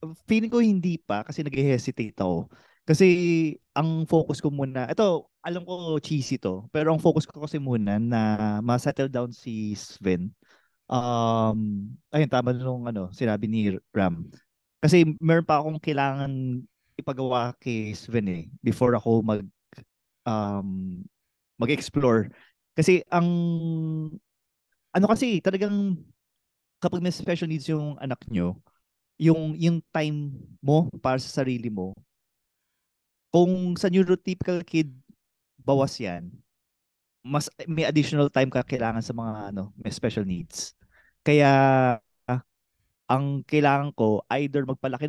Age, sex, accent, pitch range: 20-39, male, native, 115-155 Hz